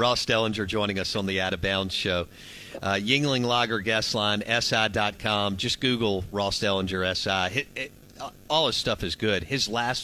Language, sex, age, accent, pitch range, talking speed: English, male, 50-69, American, 95-115 Hz, 175 wpm